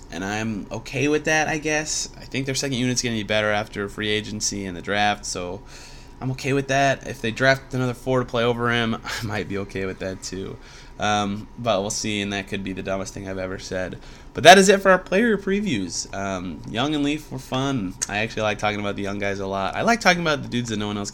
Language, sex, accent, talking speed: English, male, American, 260 wpm